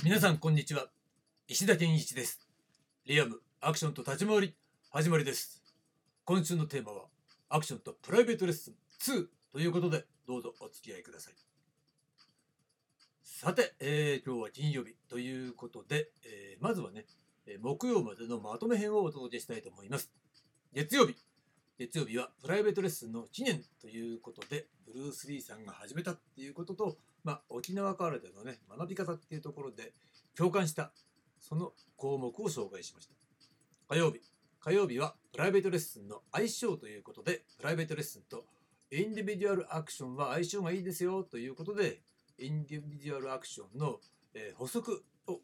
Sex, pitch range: male, 135-175 Hz